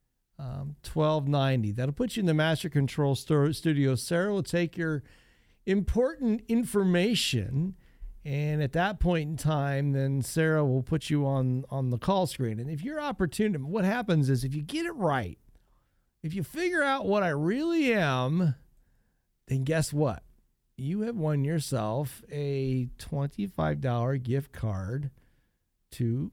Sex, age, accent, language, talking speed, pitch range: male, 50-69, American, English, 145 wpm, 130-195 Hz